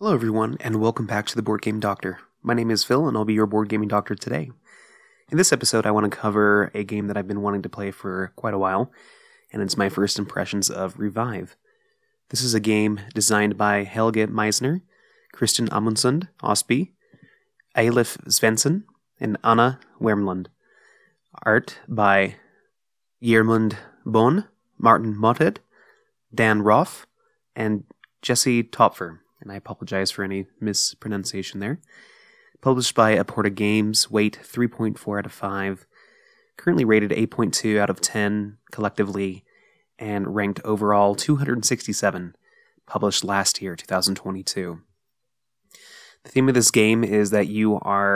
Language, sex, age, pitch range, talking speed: English, male, 20-39, 100-115 Hz, 145 wpm